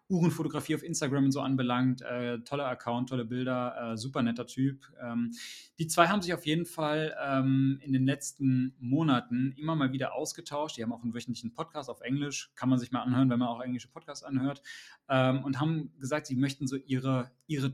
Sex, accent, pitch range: male, German, 120-140 Hz